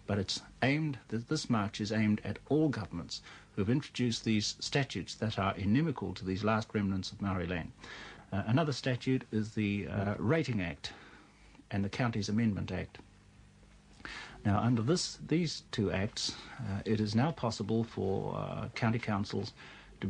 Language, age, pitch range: English, 60-79, 100-120 Hz